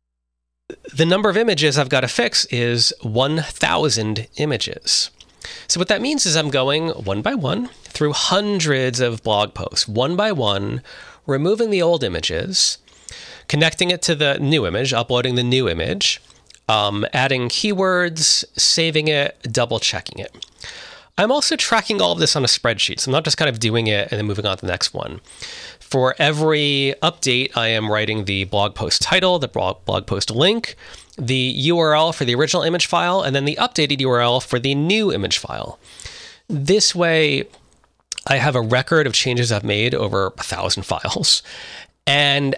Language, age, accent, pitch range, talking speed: English, 30-49, American, 110-155 Hz, 170 wpm